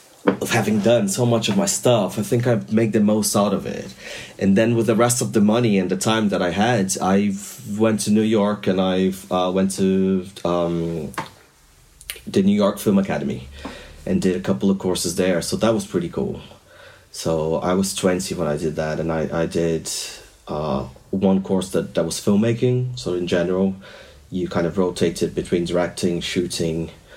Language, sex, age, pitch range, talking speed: English, male, 30-49, 85-110 Hz, 195 wpm